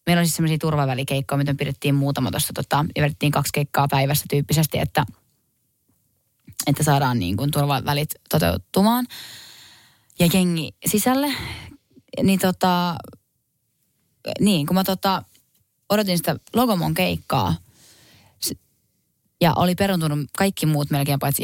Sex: female